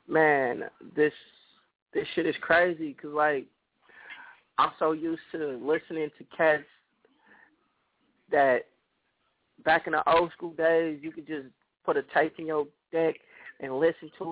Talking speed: 145 wpm